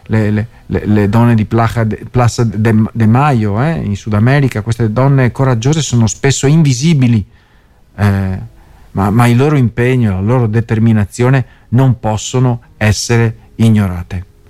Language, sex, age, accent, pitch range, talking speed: Italian, male, 40-59, native, 105-135 Hz, 125 wpm